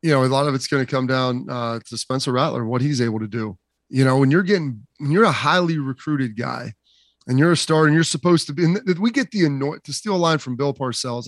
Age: 30-49